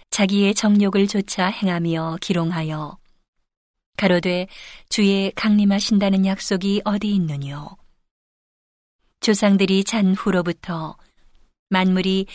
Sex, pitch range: female, 180-205 Hz